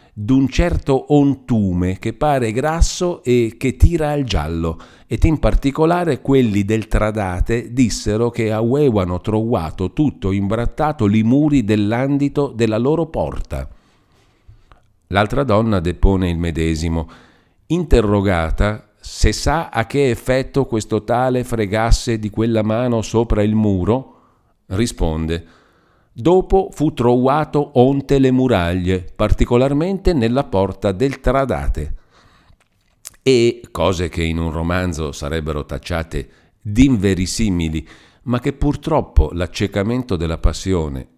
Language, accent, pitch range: Italian, native, 85-125 Hz